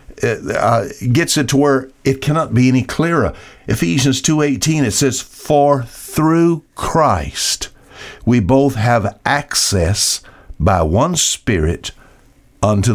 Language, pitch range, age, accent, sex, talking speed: English, 100-135 Hz, 60-79, American, male, 120 wpm